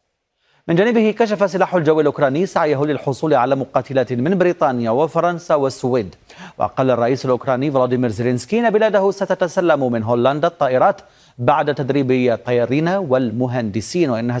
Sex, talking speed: male, 125 wpm